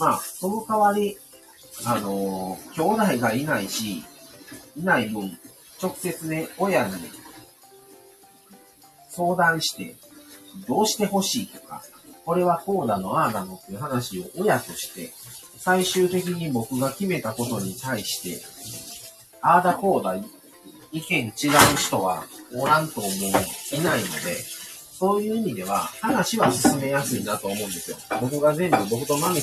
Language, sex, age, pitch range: Japanese, male, 40-59, 125-185 Hz